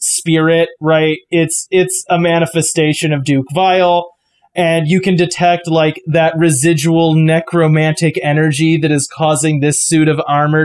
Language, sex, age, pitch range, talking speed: English, male, 20-39, 160-205 Hz, 140 wpm